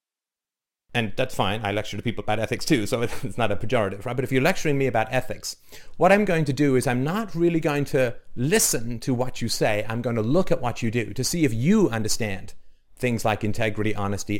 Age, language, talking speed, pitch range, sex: 40-59, English, 235 wpm, 105-135 Hz, male